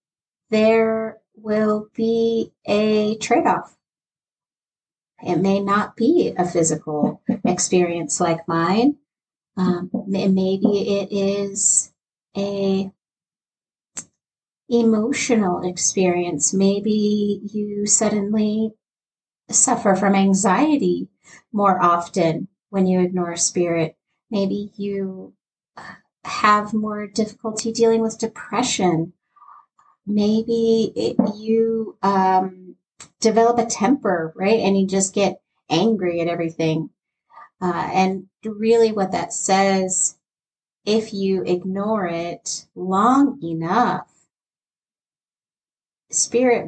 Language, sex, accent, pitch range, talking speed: English, female, American, 180-225 Hz, 90 wpm